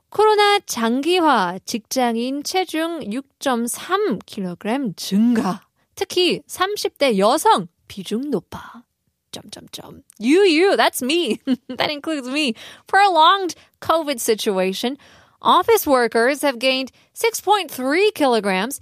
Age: 20-39